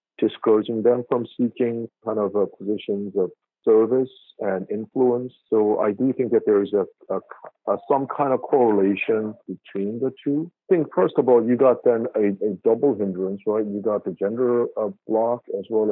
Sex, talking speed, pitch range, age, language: male, 190 wpm, 100-120 Hz, 50-69, English